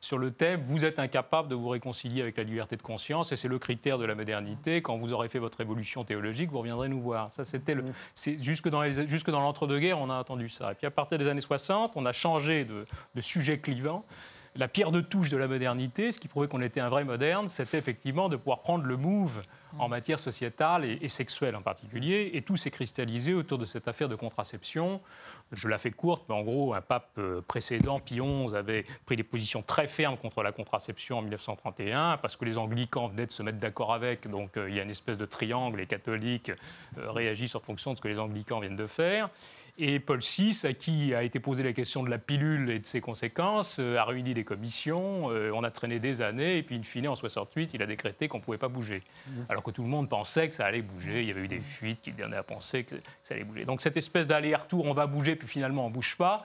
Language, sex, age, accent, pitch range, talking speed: French, male, 30-49, French, 115-150 Hz, 250 wpm